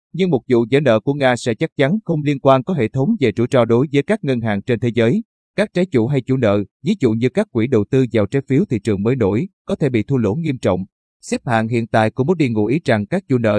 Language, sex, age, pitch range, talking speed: Vietnamese, male, 20-39, 110-145 Hz, 285 wpm